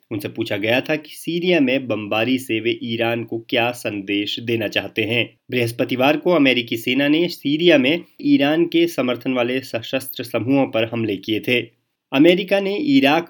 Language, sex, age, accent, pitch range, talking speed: Hindi, male, 30-49, native, 115-150 Hz, 165 wpm